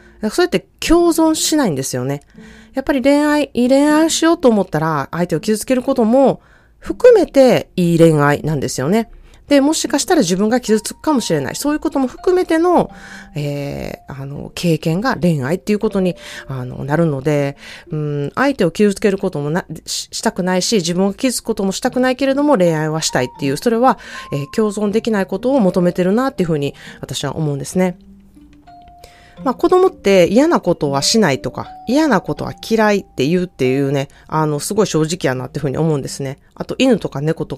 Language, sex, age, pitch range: Japanese, female, 30-49, 145-235 Hz